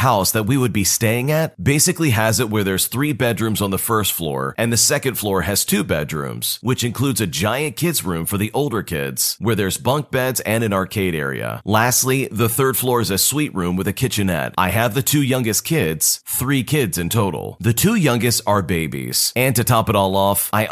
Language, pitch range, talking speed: English, 100-130 Hz, 220 wpm